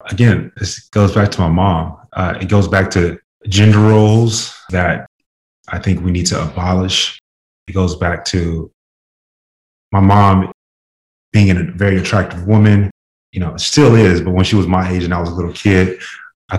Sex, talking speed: male, 175 wpm